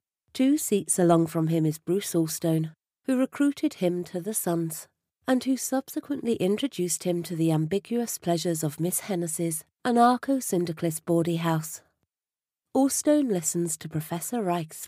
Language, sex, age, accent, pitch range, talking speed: English, female, 40-59, British, 170-235 Hz, 135 wpm